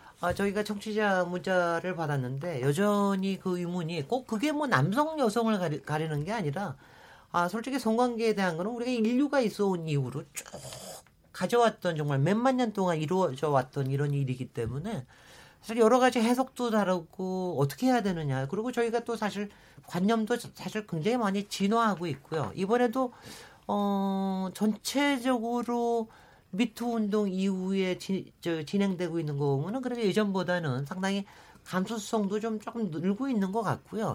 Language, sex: Korean, male